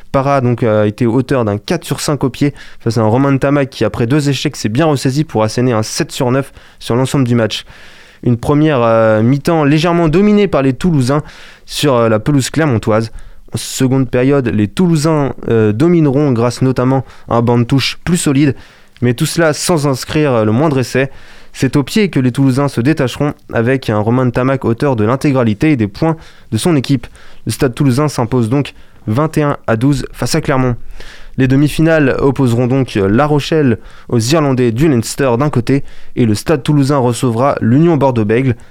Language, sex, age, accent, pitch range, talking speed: French, male, 20-39, French, 115-145 Hz, 195 wpm